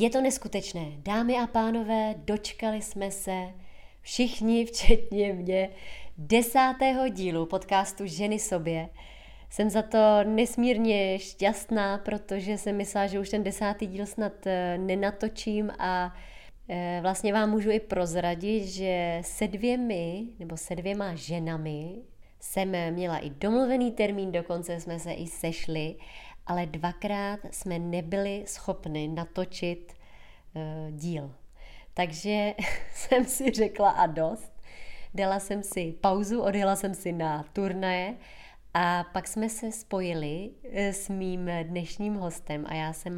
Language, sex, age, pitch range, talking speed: Czech, female, 20-39, 170-210 Hz, 125 wpm